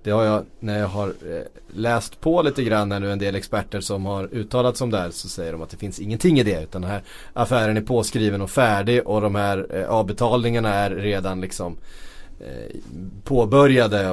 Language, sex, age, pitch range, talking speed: Swedish, male, 30-49, 95-120 Hz, 190 wpm